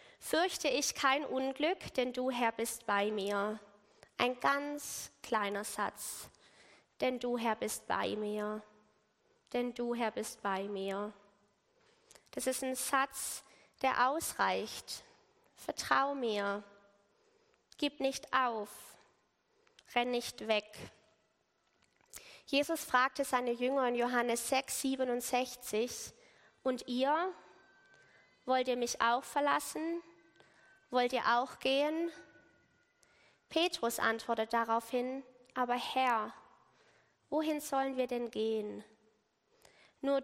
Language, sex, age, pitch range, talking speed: German, female, 20-39, 220-275 Hz, 105 wpm